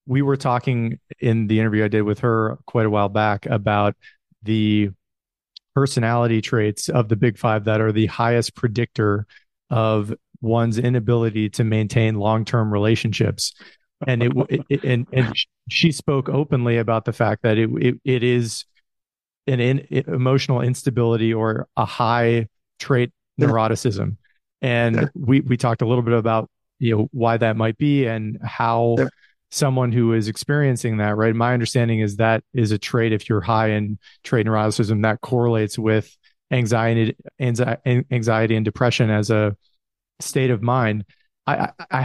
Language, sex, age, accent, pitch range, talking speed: English, male, 40-59, American, 110-130 Hz, 155 wpm